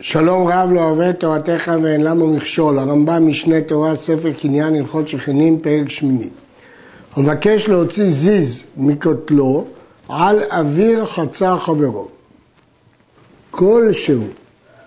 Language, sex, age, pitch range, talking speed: Hebrew, male, 60-79, 155-200 Hz, 105 wpm